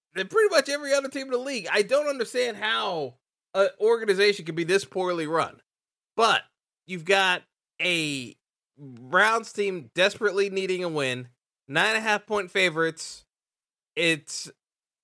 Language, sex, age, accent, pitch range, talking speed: English, male, 30-49, American, 140-190 Hz, 145 wpm